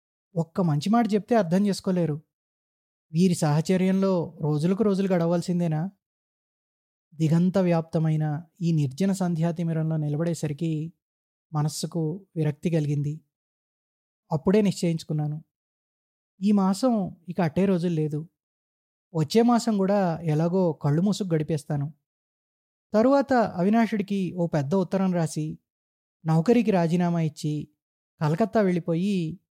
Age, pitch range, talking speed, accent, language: 20-39, 155-195 Hz, 95 wpm, native, Telugu